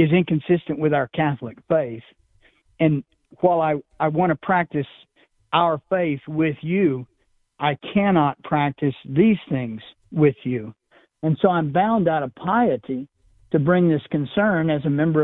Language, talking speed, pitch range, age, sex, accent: English, 150 wpm, 140-170 Hz, 50-69, male, American